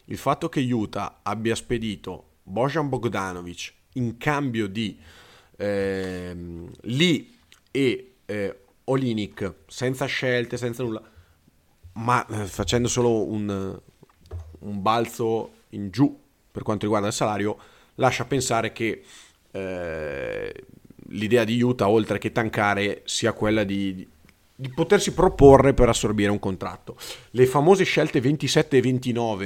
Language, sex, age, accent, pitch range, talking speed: Italian, male, 30-49, native, 100-130 Hz, 125 wpm